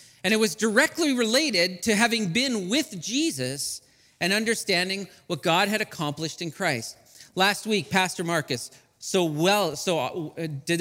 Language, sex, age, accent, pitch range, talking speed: English, male, 40-59, American, 155-210 Hz, 145 wpm